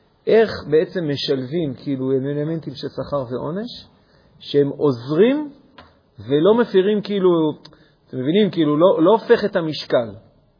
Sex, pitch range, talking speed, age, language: male, 130-160 Hz, 115 wpm, 40-59, Hebrew